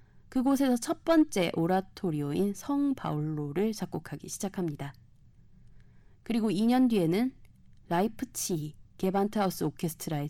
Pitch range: 150-215 Hz